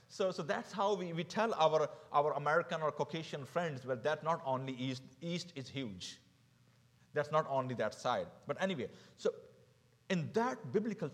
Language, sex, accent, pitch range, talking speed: English, male, Indian, 130-200 Hz, 170 wpm